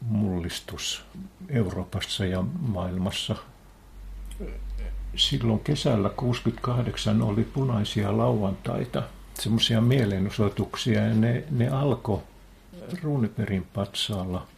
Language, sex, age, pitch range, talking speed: Finnish, male, 60-79, 100-125 Hz, 70 wpm